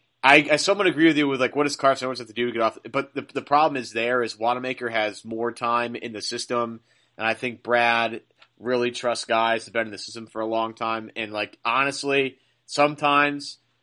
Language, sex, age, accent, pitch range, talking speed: English, male, 30-49, American, 115-135 Hz, 225 wpm